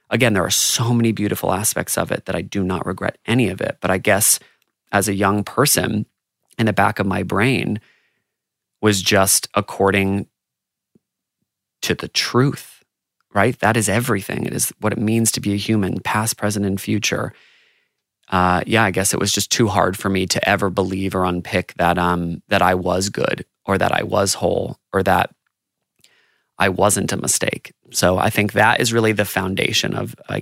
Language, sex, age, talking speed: English, male, 20-39, 190 wpm